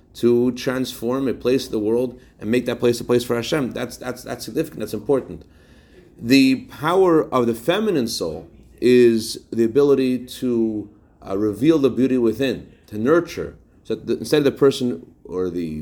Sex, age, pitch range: male, 40-59, 105-135 Hz